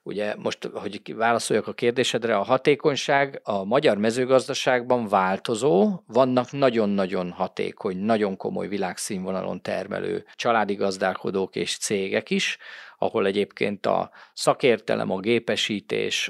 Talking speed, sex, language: 110 wpm, male, Hungarian